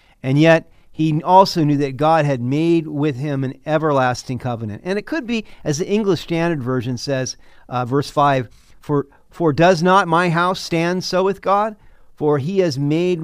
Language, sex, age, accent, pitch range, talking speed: English, male, 50-69, American, 125-155 Hz, 180 wpm